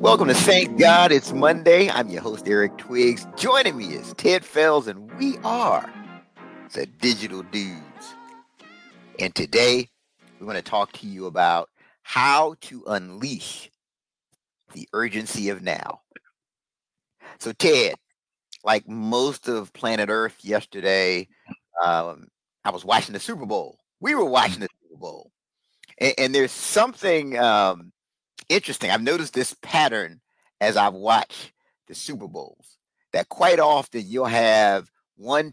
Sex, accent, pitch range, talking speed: male, American, 110-170 Hz, 135 wpm